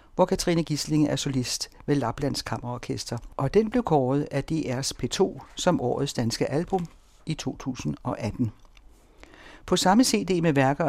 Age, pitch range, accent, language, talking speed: 60-79, 130-160 Hz, native, Danish, 145 wpm